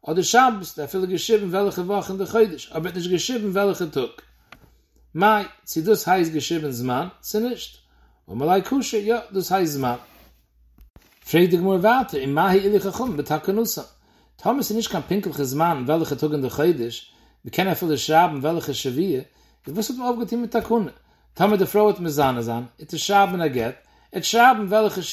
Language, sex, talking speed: English, male, 155 wpm